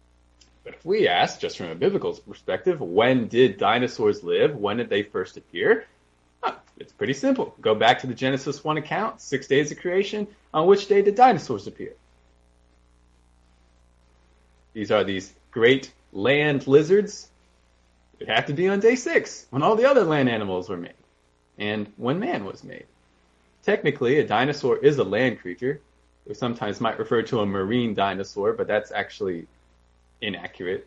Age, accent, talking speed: 20-39, American, 165 wpm